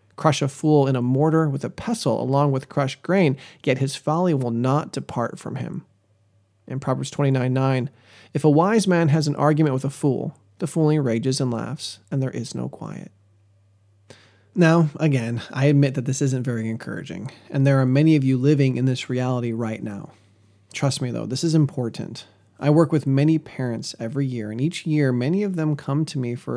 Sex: male